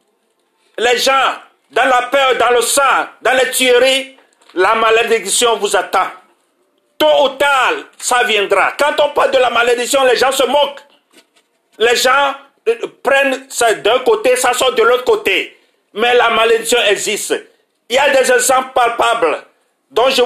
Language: French